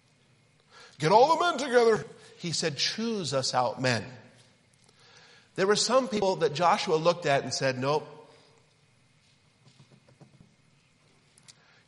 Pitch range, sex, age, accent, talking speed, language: 135-210 Hz, male, 50-69, American, 110 wpm, English